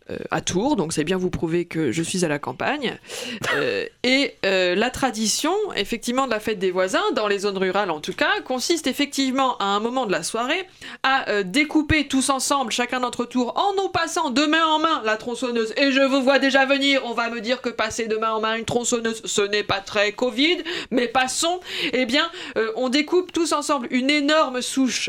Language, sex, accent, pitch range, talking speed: French, female, French, 210-315 Hz, 220 wpm